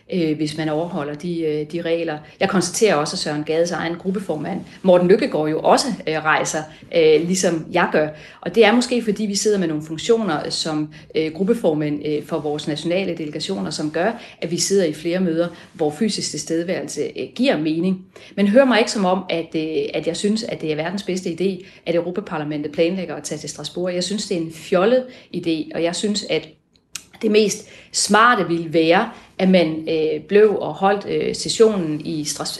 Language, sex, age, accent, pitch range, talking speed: Danish, female, 40-59, native, 160-200 Hz, 180 wpm